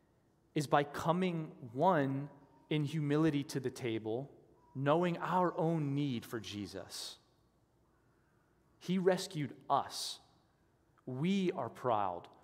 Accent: American